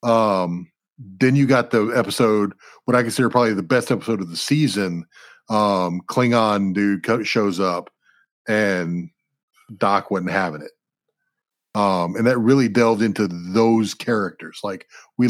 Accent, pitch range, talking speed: American, 100-120 Hz, 145 wpm